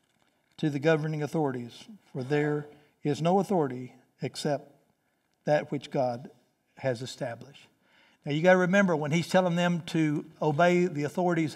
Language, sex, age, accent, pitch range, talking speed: English, male, 60-79, American, 145-175 Hz, 145 wpm